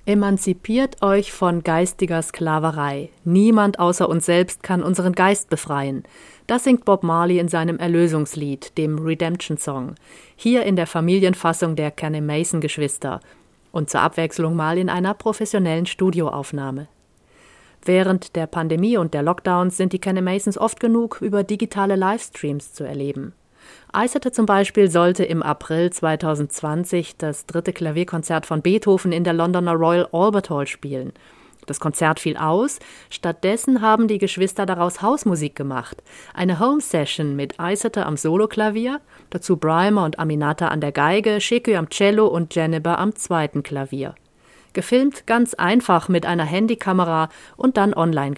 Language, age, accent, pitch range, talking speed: German, 30-49, German, 155-200 Hz, 145 wpm